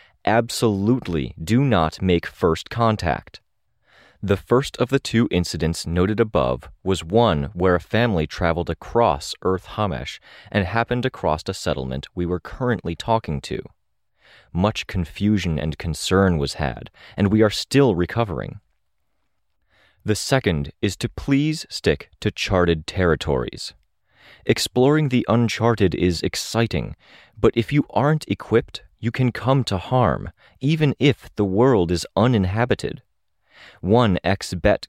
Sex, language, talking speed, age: male, English, 130 wpm, 30-49